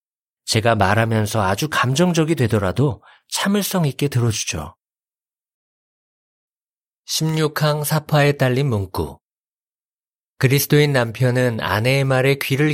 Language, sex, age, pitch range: Korean, male, 40-59, 105-140 Hz